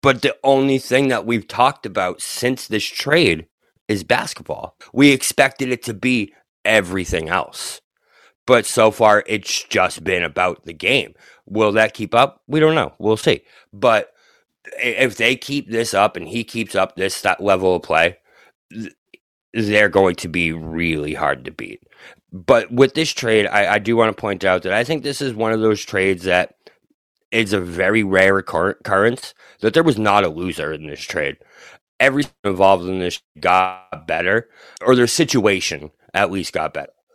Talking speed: 175 wpm